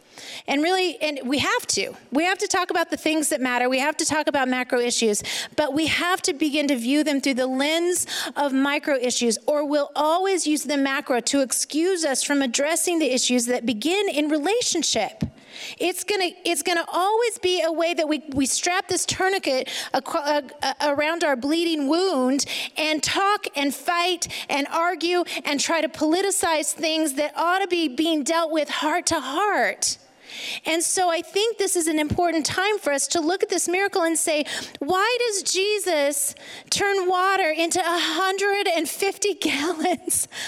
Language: English